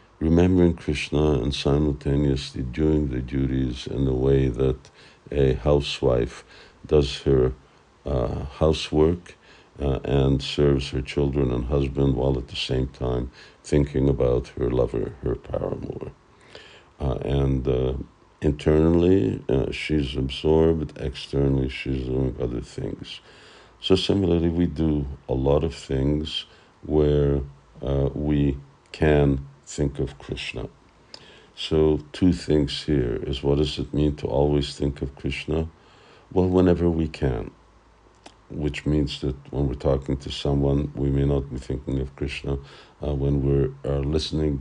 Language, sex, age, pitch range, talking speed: English, male, 50-69, 70-75 Hz, 135 wpm